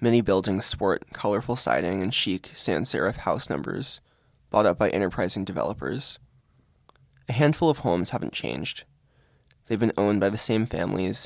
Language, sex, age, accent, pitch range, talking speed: English, male, 20-39, American, 95-125 Hz, 150 wpm